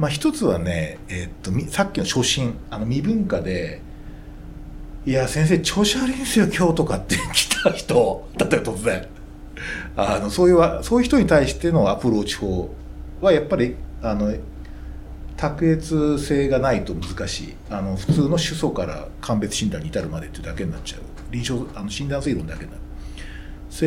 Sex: male